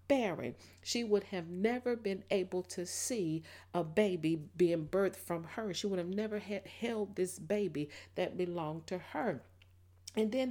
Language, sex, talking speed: English, female, 165 wpm